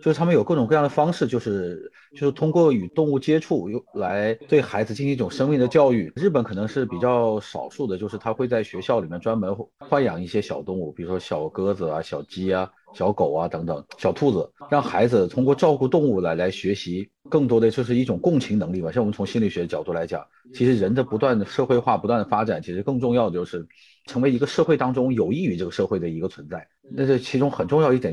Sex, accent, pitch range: male, native, 95-135 Hz